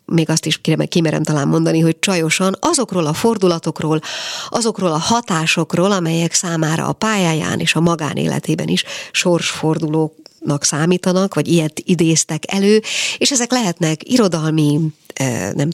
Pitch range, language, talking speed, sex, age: 150-175 Hz, Hungarian, 130 wpm, female, 50-69